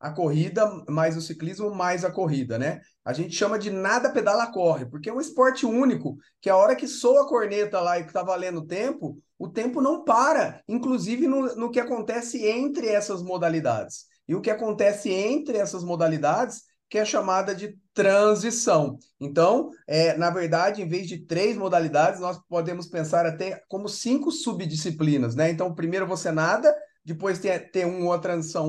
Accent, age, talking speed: Brazilian, 30-49, 175 wpm